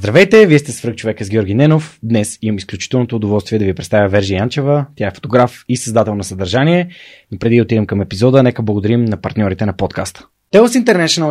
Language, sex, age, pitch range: Bulgarian, male, 20-39, 110-150 Hz